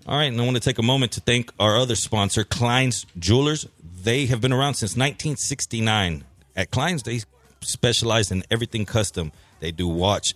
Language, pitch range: English, 100-140 Hz